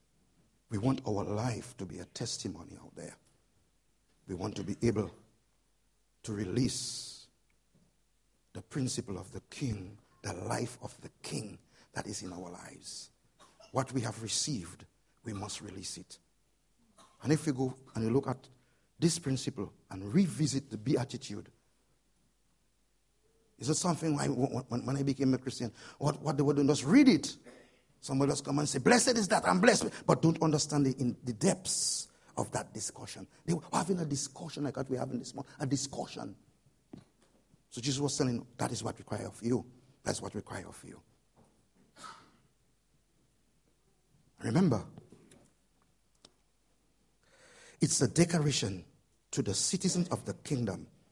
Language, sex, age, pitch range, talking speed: English, male, 50-69, 110-150 Hz, 155 wpm